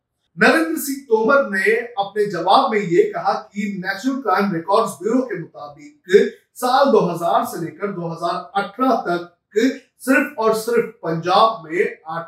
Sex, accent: male, native